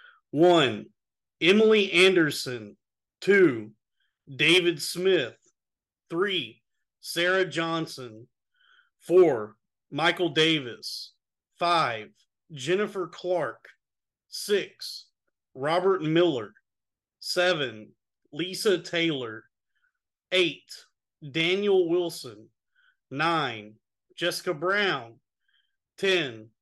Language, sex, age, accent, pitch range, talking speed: English, male, 40-59, American, 145-200 Hz, 65 wpm